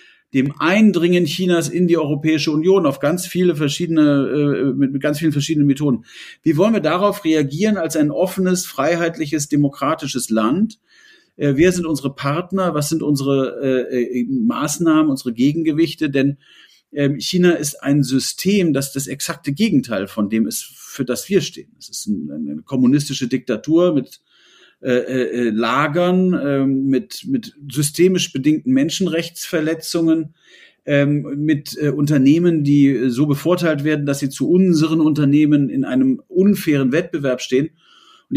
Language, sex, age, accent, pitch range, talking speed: German, male, 40-59, German, 140-175 Hz, 140 wpm